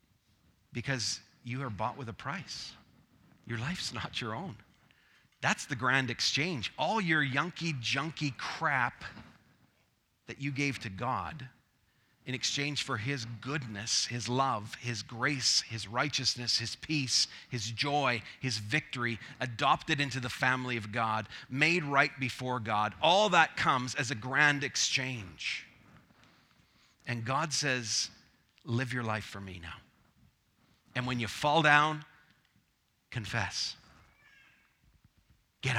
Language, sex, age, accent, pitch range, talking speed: English, male, 40-59, American, 115-140 Hz, 125 wpm